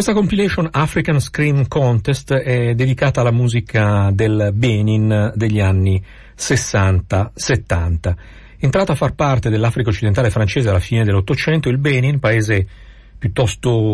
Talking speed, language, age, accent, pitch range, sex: 120 wpm, Italian, 50-69, native, 100-125 Hz, male